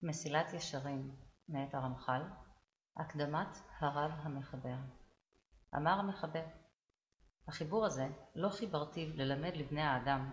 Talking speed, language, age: 95 wpm, Hebrew, 30-49